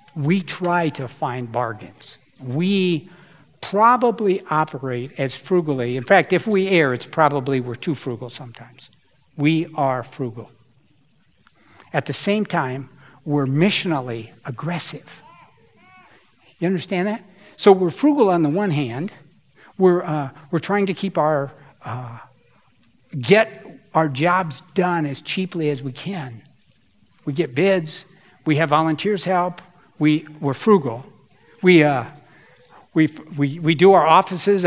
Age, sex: 60-79, male